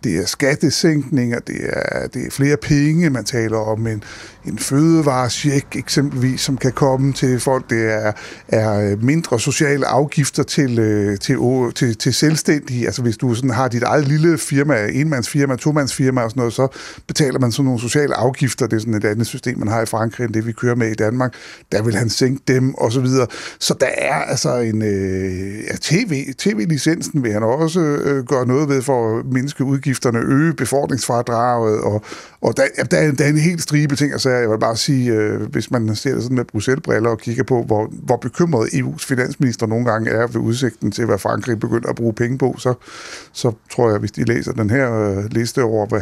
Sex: male